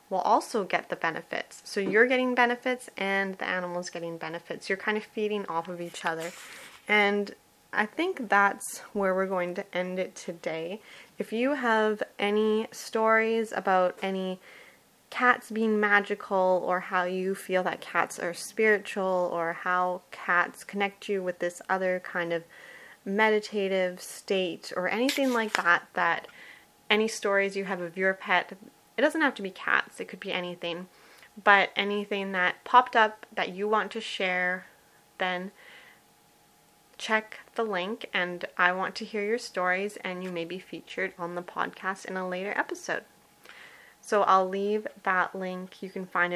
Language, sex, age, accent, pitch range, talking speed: English, female, 20-39, American, 180-215 Hz, 165 wpm